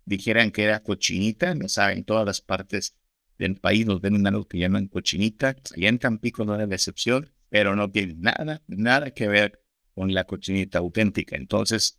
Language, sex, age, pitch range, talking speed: Spanish, male, 50-69, 95-120 Hz, 175 wpm